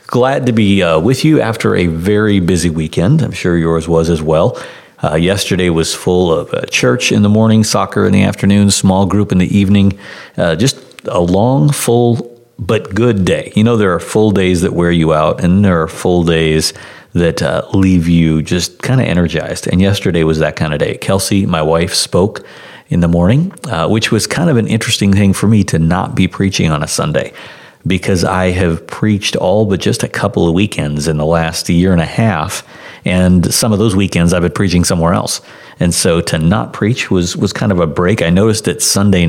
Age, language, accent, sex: 50-69, English, American, male